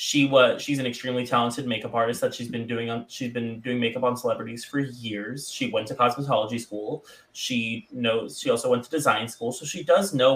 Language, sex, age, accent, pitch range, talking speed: English, male, 20-39, American, 115-145 Hz, 220 wpm